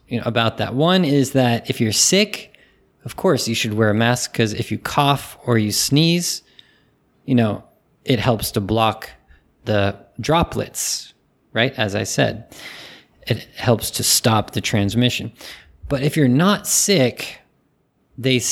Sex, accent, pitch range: male, American, 110-140 Hz